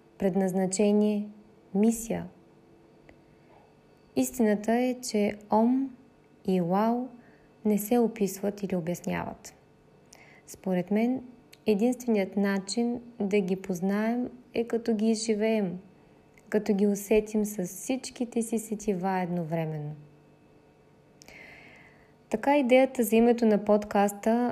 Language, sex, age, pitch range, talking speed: Bulgarian, female, 20-39, 195-230 Hz, 95 wpm